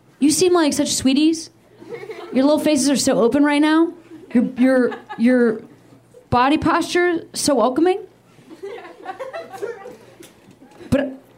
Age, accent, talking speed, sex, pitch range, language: 30-49, American, 110 wpm, female, 230-315 Hz, English